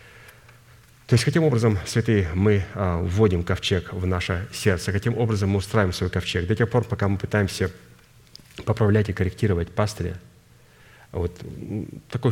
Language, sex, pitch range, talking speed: Russian, male, 90-115 Hz, 140 wpm